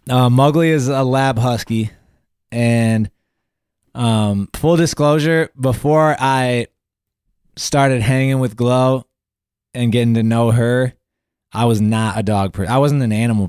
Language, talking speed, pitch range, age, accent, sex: English, 140 wpm, 105-130 Hz, 20-39, American, male